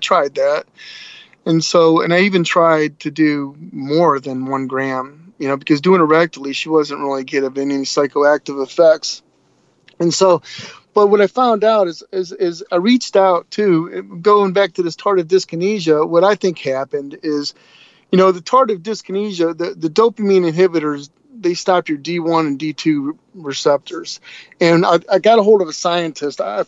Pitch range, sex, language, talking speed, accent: 145-180 Hz, male, English, 175 wpm, American